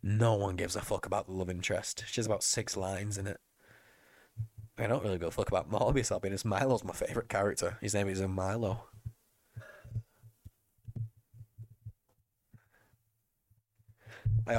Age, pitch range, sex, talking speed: 20-39, 100-115 Hz, male, 145 wpm